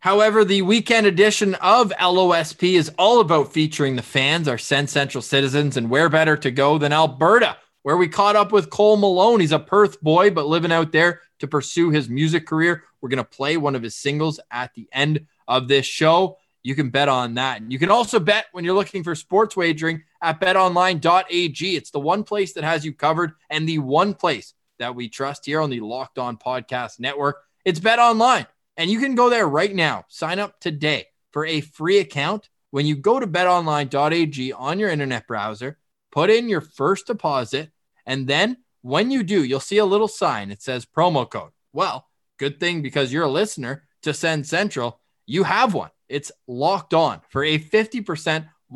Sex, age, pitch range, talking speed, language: male, 20-39, 140-185 Hz, 195 wpm, English